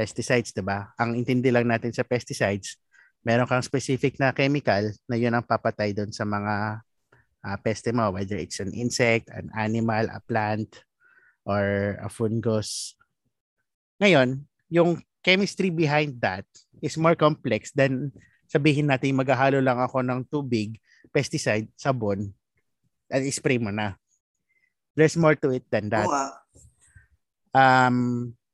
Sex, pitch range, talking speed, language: male, 110-145 Hz, 130 wpm, Filipino